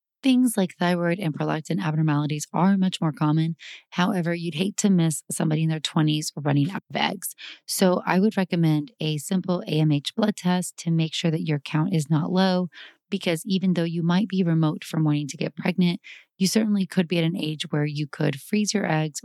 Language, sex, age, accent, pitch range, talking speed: English, female, 30-49, American, 160-190 Hz, 205 wpm